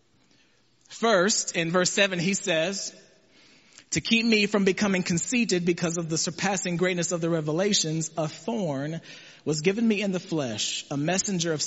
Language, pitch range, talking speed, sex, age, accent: English, 155-225 Hz, 160 wpm, male, 40-59, American